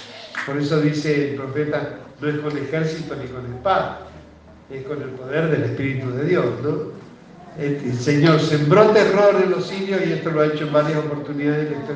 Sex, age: male, 60-79